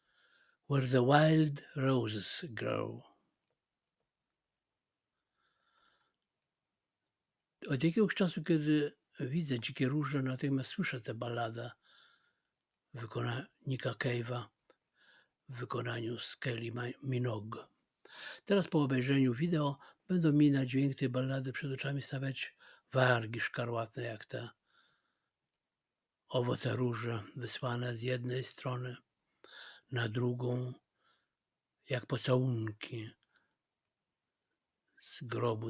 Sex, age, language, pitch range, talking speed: male, 60-79, Polish, 120-140 Hz, 85 wpm